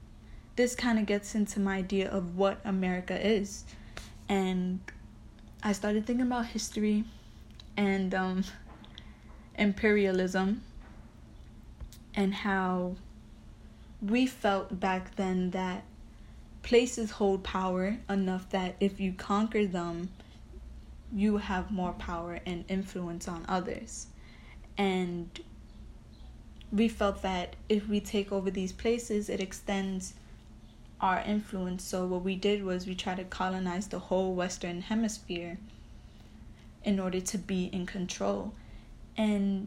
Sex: female